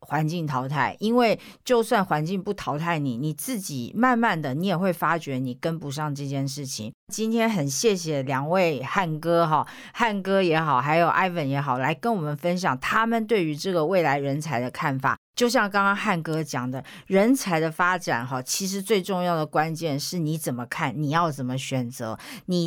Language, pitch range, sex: Chinese, 140-185 Hz, female